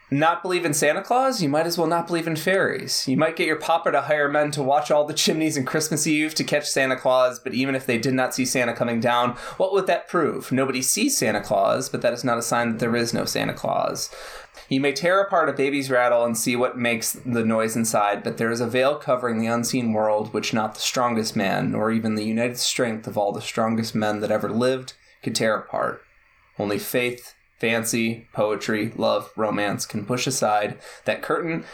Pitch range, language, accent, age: 115-145 Hz, English, American, 20-39